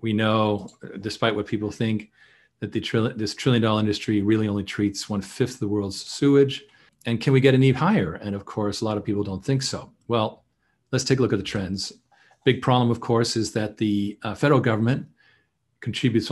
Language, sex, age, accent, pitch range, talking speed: English, male, 40-59, American, 100-125 Hz, 200 wpm